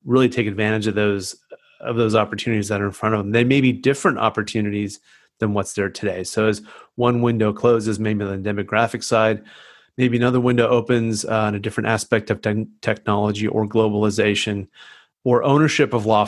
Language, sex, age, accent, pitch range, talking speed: English, male, 30-49, American, 105-115 Hz, 190 wpm